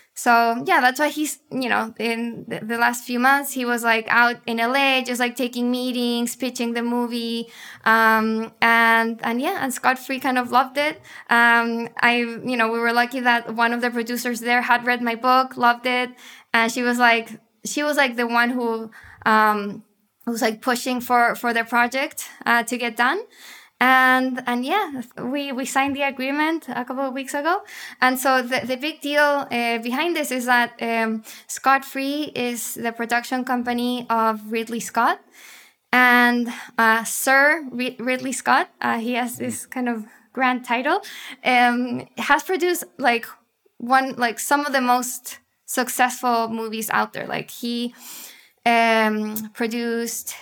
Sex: female